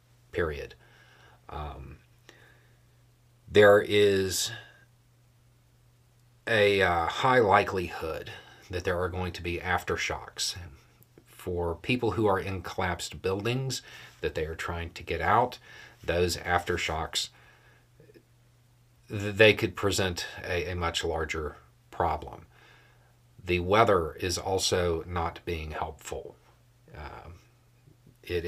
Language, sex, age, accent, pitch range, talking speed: English, male, 40-59, American, 85-120 Hz, 100 wpm